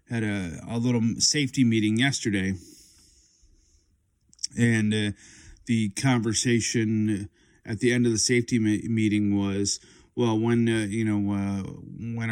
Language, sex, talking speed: English, male, 125 wpm